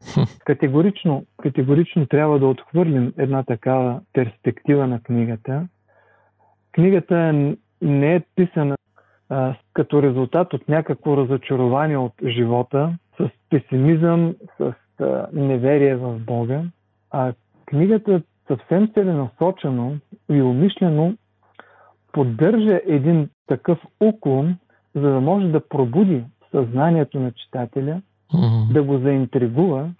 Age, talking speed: 40-59, 100 wpm